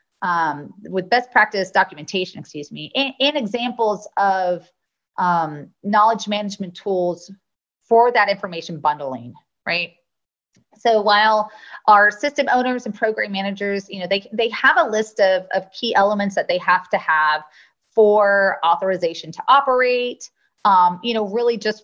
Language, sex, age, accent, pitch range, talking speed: English, female, 30-49, American, 170-225 Hz, 145 wpm